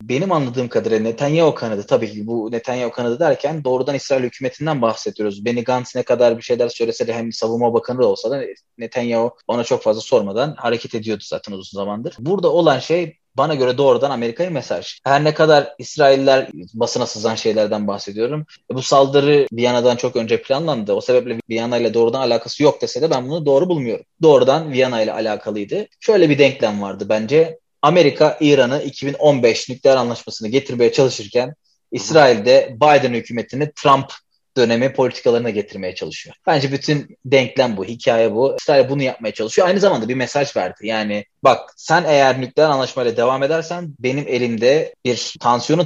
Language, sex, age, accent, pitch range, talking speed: Turkish, male, 30-49, native, 115-150 Hz, 160 wpm